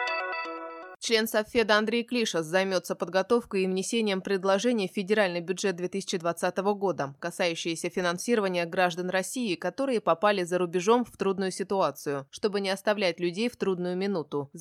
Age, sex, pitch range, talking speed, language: 20-39, female, 175-215 Hz, 135 wpm, Russian